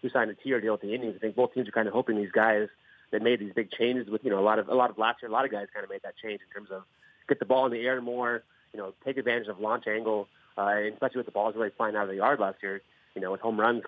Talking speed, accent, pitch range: 335 wpm, American, 105-130 Hz